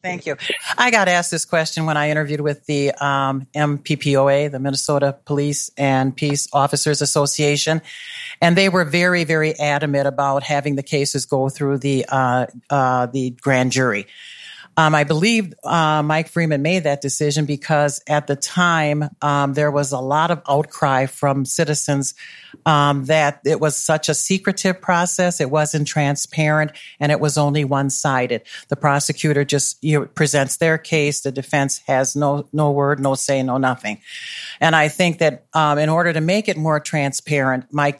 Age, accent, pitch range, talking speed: 50-69, American, 140-160 Hz, 170 wpm